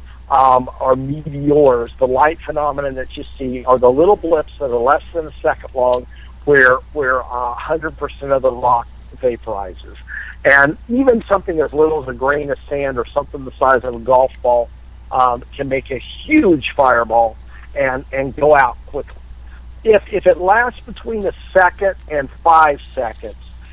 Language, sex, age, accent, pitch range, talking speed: English, male, 50-69, American, 120-155 Hz, 170 wpm